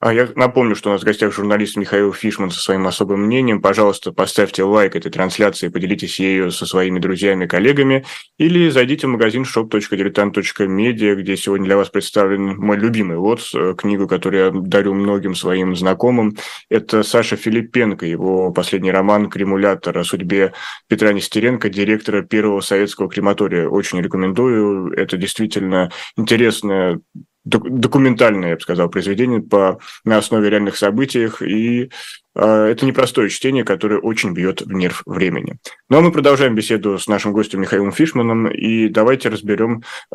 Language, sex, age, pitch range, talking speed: Russian, male, 20-39, 100-115 Hz, 150 wpm